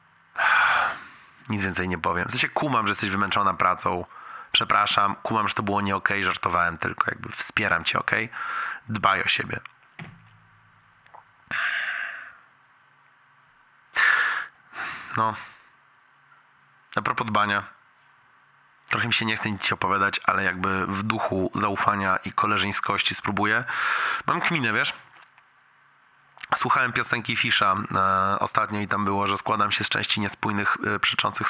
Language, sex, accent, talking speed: Polish, male, native, 120 wpm